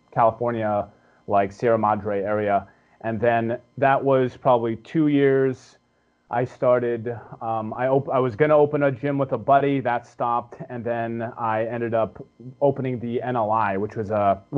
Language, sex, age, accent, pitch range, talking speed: English, male, 30-49, American, 110-130 Hz, 165 wpm